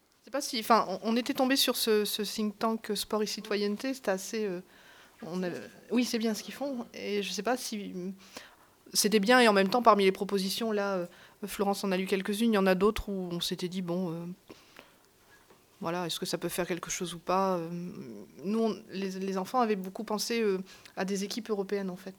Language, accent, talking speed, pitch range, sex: French, French, 215 wpm, 185-215 Hz, female